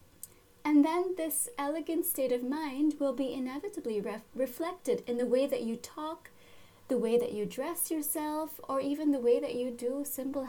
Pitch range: 235-295 Hz